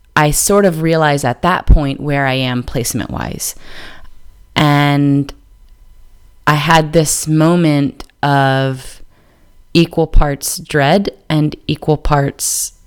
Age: 30-49